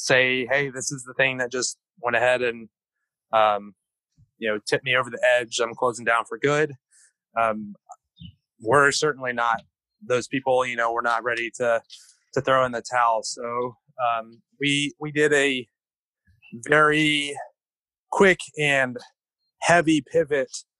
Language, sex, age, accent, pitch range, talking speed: English, male, 20-39, American, 115-145 Hz, 150 wpm